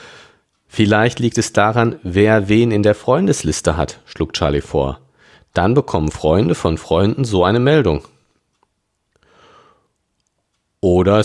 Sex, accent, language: male, German, German